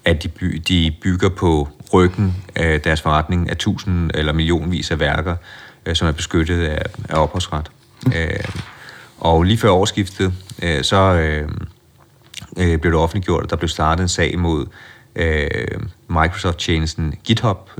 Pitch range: 80-95 Hz